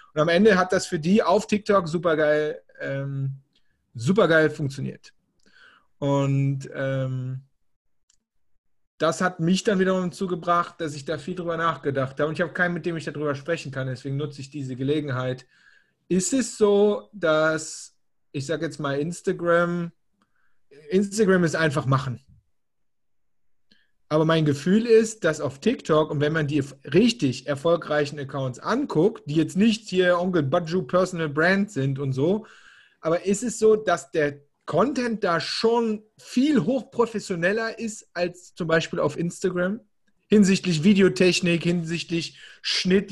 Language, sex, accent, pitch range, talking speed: German, male, German, 150-190 Hz, 140 wpm